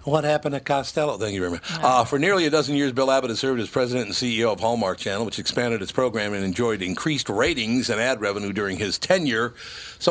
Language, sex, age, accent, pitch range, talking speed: English, male, 60-79, American, 100-125 Hz, 235 wpm